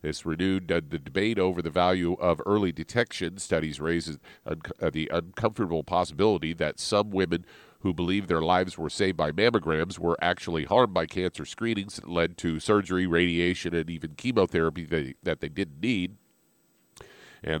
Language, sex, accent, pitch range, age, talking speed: English, male, American, 80-100 Hz, 40-59, 155 wpm